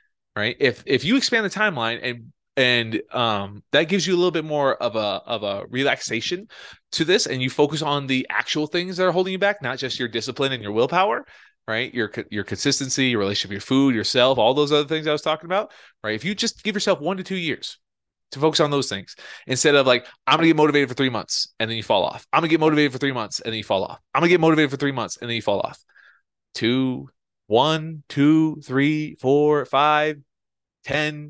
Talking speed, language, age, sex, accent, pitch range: 230 wpm, English, 20-39, male, American, 125-165 Hz